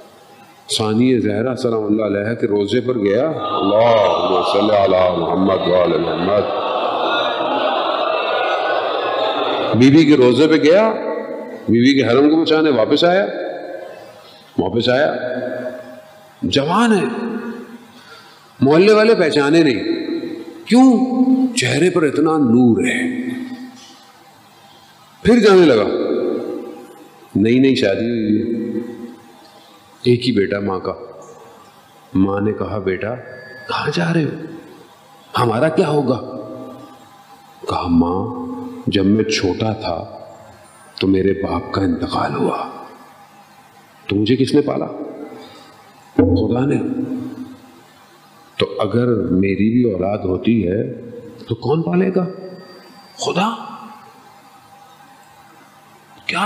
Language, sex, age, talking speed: Urdu, male, 50-69, 105 wpm